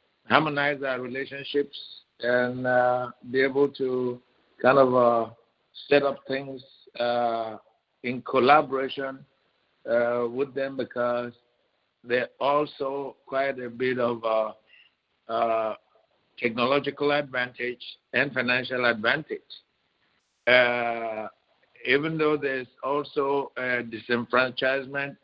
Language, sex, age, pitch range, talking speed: English, male, 60-79, 125-140 Hz, 95 wpm